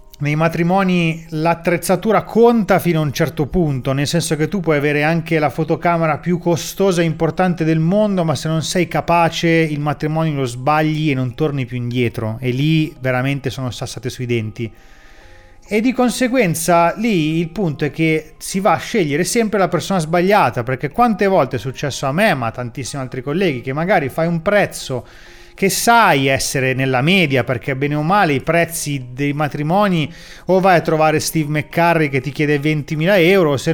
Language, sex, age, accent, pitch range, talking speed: Italian, male, 30-49, native, 145-170 Hz, 185 wpm